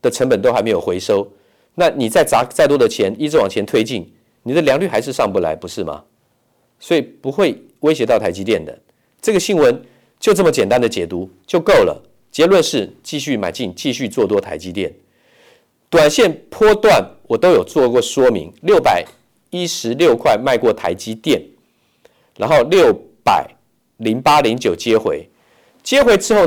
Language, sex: Chinese, male